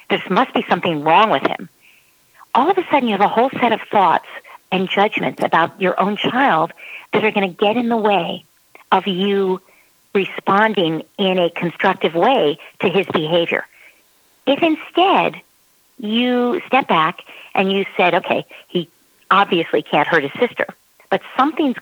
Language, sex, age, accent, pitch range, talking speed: English, female, 50-69, American, 185-275 Hz, 160 wpm